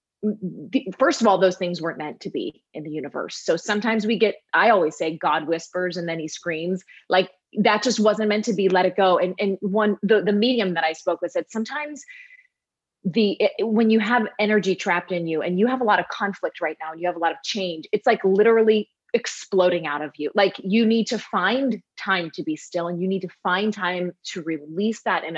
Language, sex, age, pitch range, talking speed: English, female, 30-49, 170-220 Hz, 230 wpm